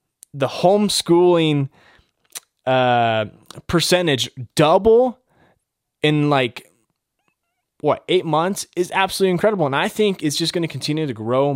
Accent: American